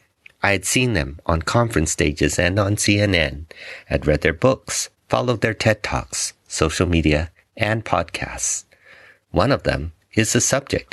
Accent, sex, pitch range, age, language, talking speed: American, male, 80-110 Hz, 50-69, English, 155 wpm